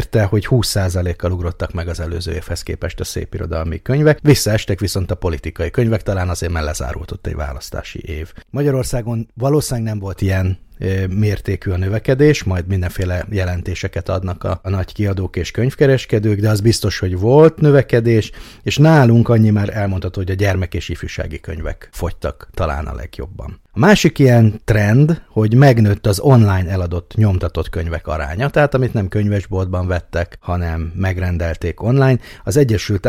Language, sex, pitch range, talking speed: Hungarian, male, 90-115 Hz, 150 wpm